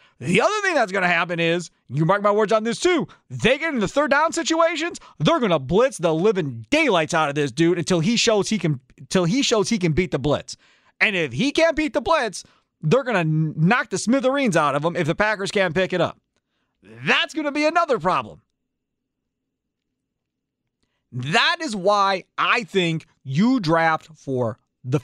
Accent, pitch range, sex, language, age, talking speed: American, 165-260 Hz, male, English, 40-59, 190 wpm